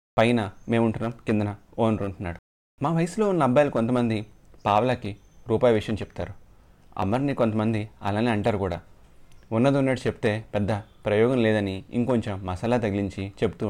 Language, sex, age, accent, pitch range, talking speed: Telugu, male, 30-49, native, 100-120 Hz, 130 wpm